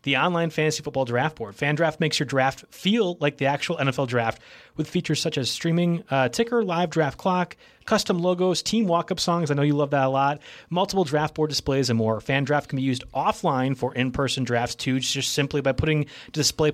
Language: English